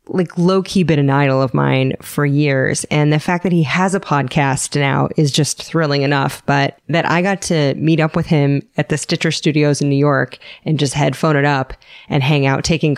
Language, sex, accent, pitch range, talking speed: English, female, American, 145-190 Hz, 215 wpm